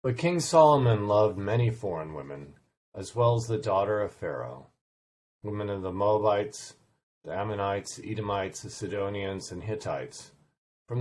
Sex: male